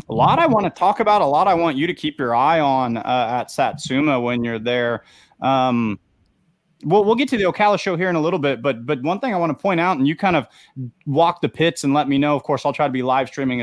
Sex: male